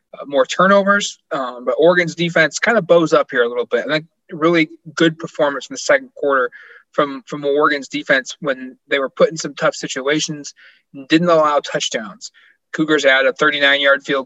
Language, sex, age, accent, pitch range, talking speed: English, male, 20-39, American, 140-175 Hz, 195 wpm